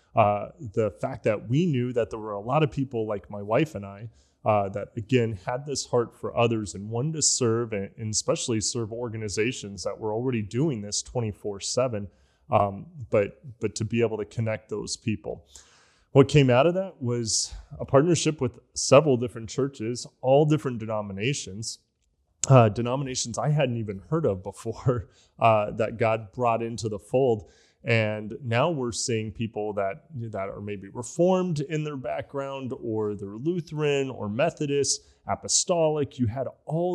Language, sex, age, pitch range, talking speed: English, male, 20-39, 105-130 Hz, 165 wpm